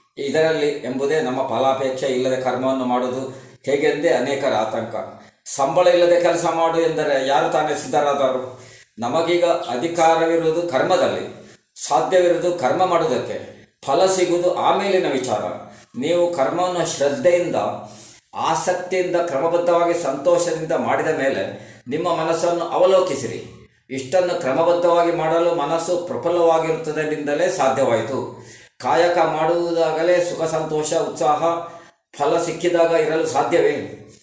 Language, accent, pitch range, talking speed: Kannada, native, 135-170 Hz, 95 wpm